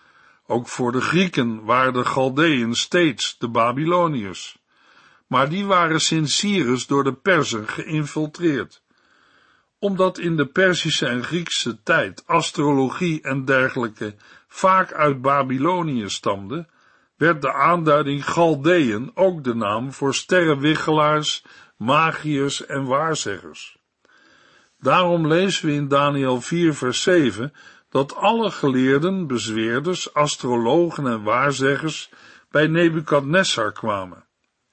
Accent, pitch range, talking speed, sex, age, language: Dutch, 130-170 Hz, 110 wpm, male, 60-79, Dutch